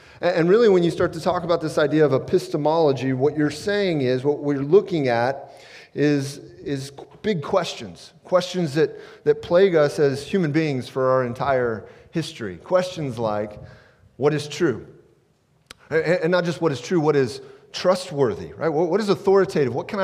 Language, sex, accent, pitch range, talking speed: English, male, American, 130-185 Hz, 170 wpm